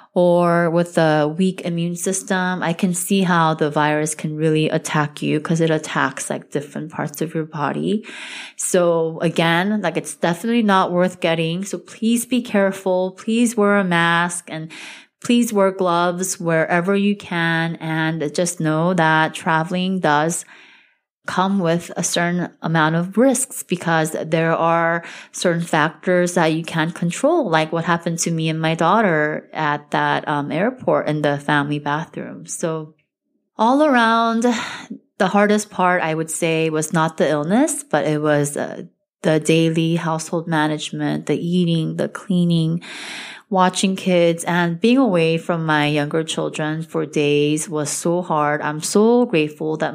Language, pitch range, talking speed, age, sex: English, 155-185 Hz, 155 wpm, 20-39, female